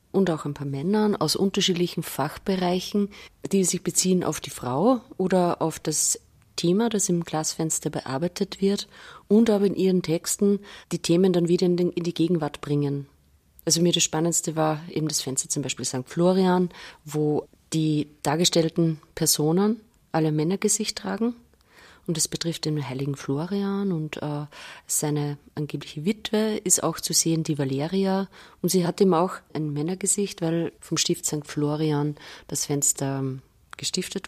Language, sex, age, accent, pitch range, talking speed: German, female, 30-49, German, 150-185 Hz, 150 wpm